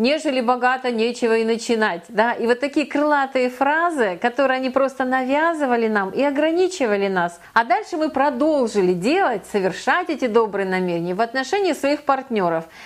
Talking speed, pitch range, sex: 145 wpm, 225-310 Hz, female